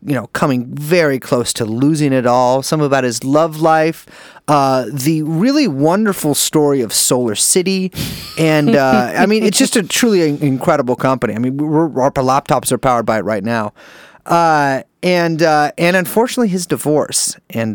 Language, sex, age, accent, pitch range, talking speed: English, male, 30-49, American, 125-170 Hz, 170 wpm